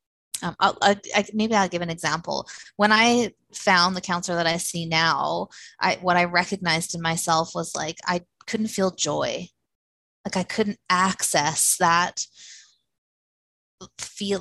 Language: English